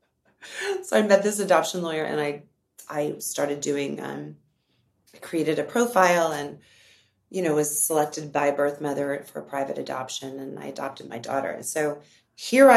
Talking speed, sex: 165 wpm, female